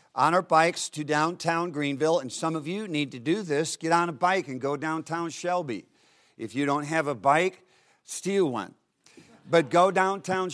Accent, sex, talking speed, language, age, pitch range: American, male, 190 wpm, English, 50-69, 145-180 Hz